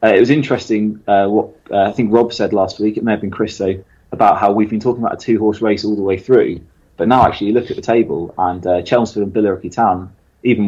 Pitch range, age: 95-110 Hz, 20-39